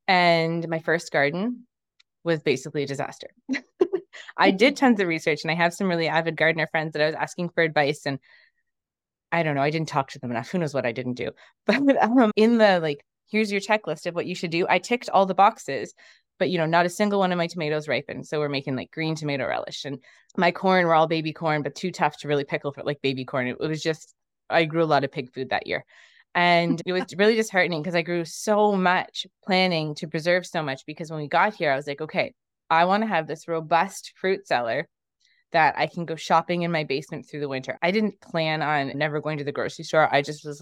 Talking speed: 240 wpm